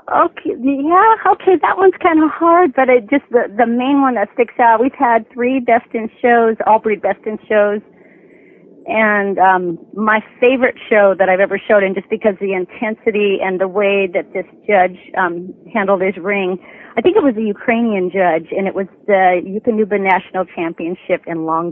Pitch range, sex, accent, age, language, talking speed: 190-240 Hz, female, American, 40-59, English, 195 wpm